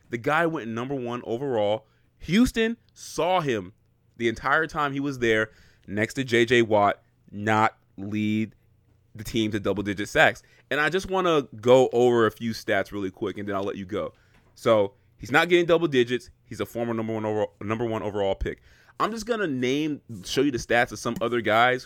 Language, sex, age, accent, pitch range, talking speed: English, male, 30-49, American, 110-130 Hz, 190 wpm